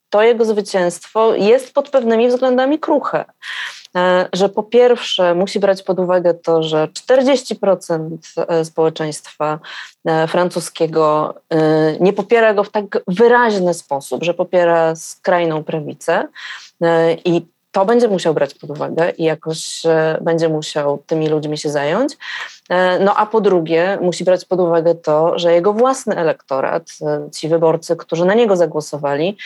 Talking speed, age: 130 wpm, 20-39